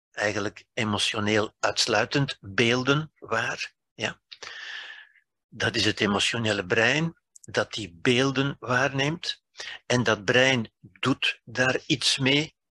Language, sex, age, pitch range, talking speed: Dutch, male, 60-79, 105-145 Hz, 100 wpm